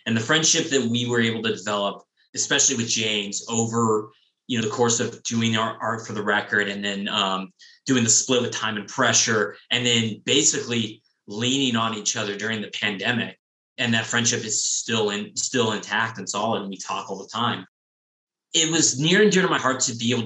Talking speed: 210 wpm